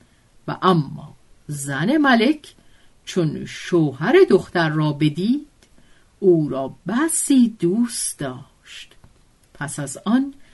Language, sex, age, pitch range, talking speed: Persian, female, 50-69, 150-235 Hz, 95 wpm